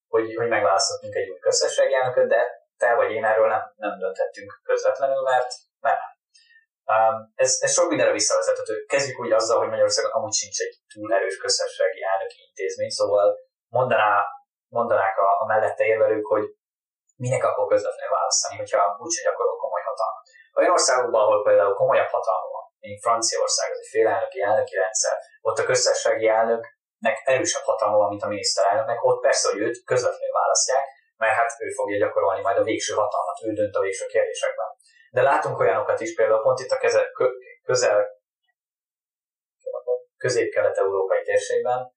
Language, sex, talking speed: Hungarian, male, 165 wpm